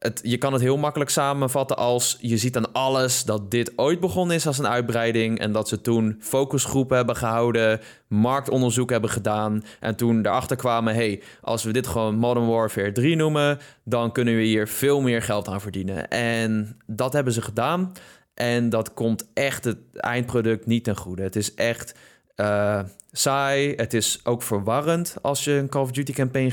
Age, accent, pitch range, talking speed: 20-39, Dutch, 110-135 Hz, 185 wpm